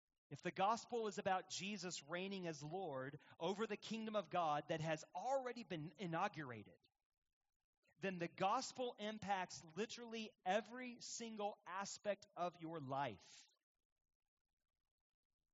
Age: 40-59